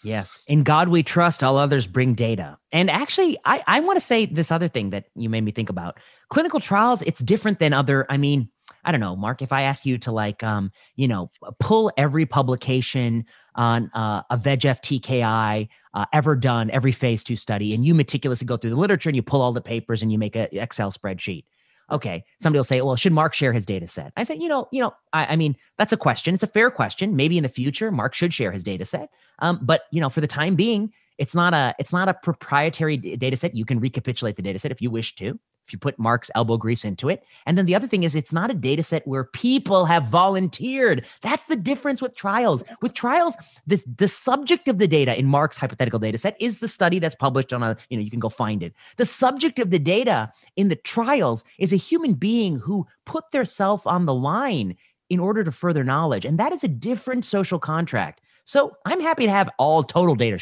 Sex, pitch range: male, 120-200 Hz